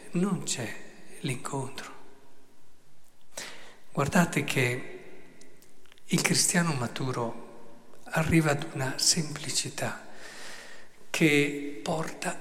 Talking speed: 70 wpm